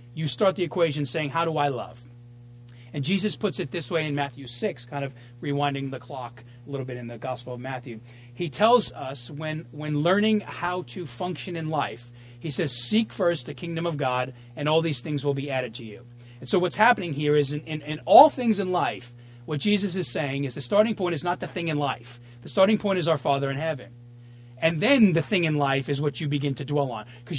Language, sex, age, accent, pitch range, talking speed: English, male, 30-49, American, 130-180 Hz, 235 wpm